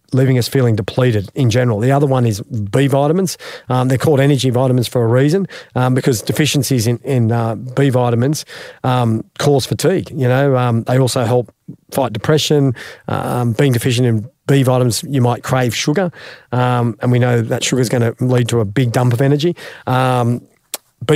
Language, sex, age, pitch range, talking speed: English, male, 40-59, 125-145 Hz, 190 wpm